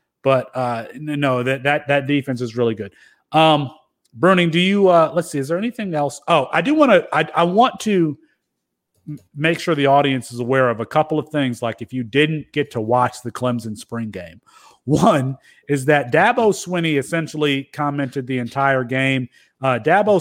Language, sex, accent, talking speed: English, male, American, 195 wpm